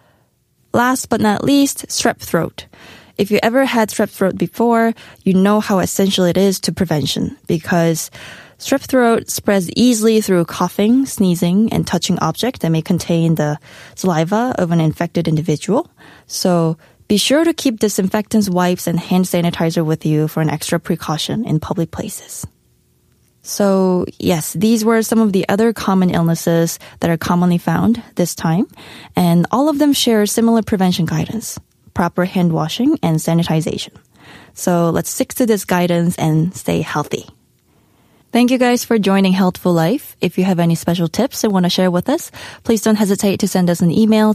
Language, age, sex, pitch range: Korean, 20-39, female, 170-225 Hz